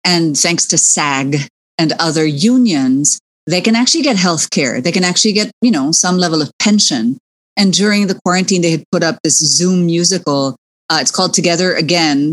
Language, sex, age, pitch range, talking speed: English, female, 30-49, 160-225 Hz, 190 wpm